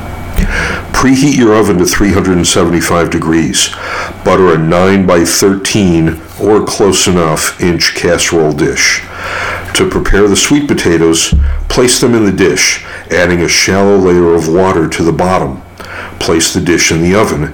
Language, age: English, 60-79